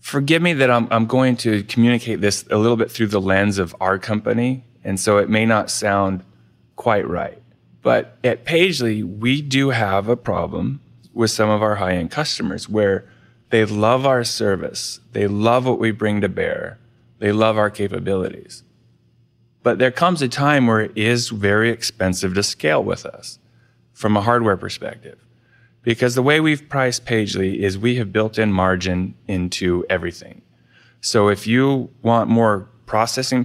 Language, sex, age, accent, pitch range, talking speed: English, male, 30-49, American, 100-120 Hz, 170 wpm